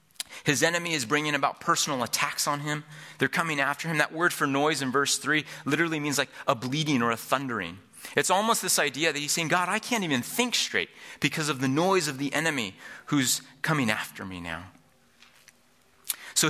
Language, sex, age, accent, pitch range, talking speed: English, male, 30-49, American, 105-145 Hz, 195 wpm